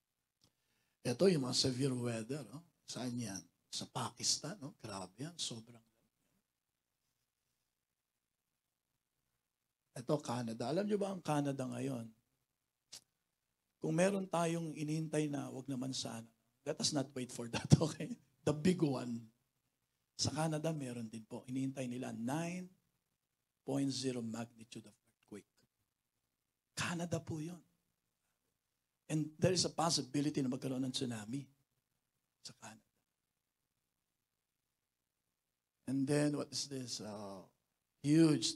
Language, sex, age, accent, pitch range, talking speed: English, male, 50-69, Filipino, 115-150 Hz, 110 wpm